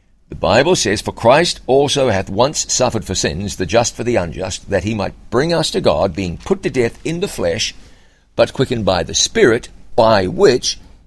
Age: 60-79